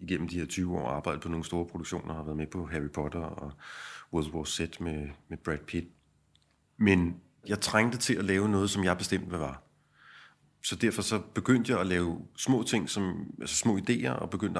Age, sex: 30-49, male